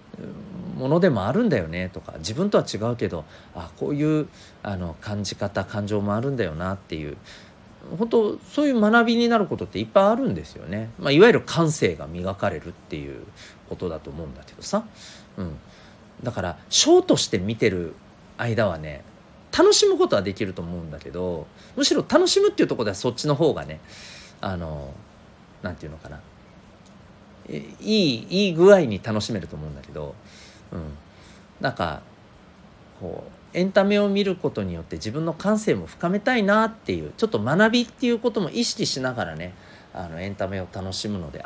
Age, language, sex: 40-59, Japanese, male